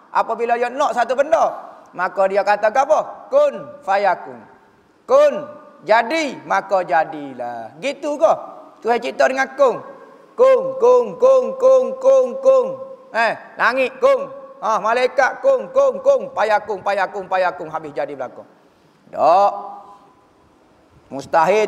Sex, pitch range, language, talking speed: male, 190-265 Hz, Malay, 115 wpm